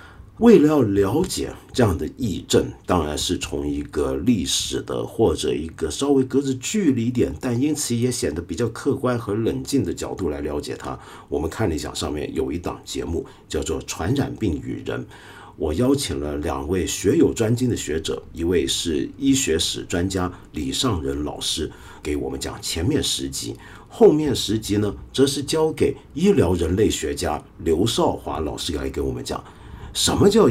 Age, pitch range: 50-69, 90-130 Hz